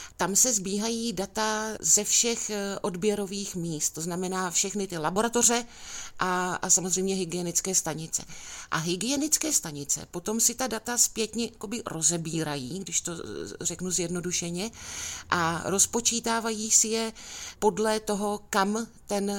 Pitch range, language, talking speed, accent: 175-220 Hz, Czech, 120 wpm, native